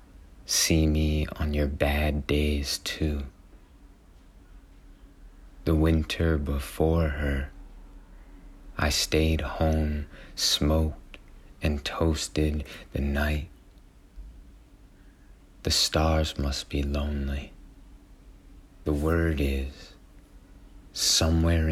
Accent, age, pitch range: American, 30-49, 70-80 Hz